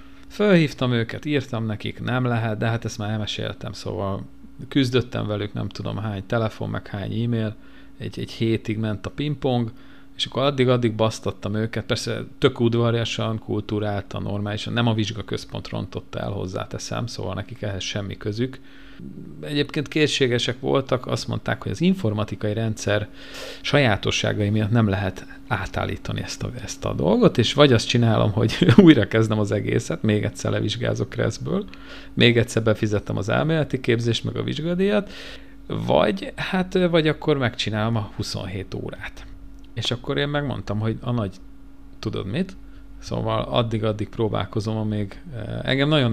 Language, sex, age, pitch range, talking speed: Hungarian, male, 50-69, 105-125 Hz, 145 wpm